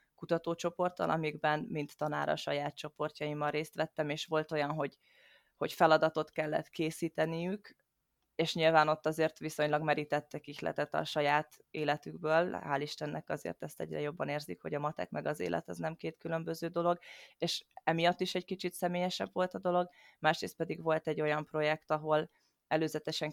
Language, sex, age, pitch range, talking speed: Hungarian, female, 20-39, 150-160 Hz, 160 wpm